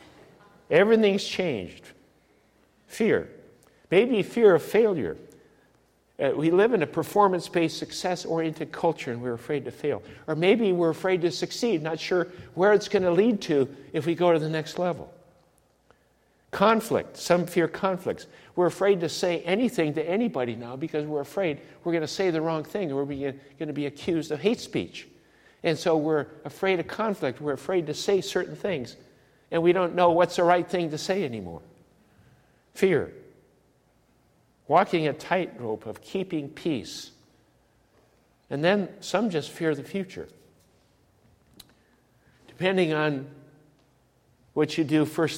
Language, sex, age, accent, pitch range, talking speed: English, male, 60-79, American, 140-175 Hz, 150 wpm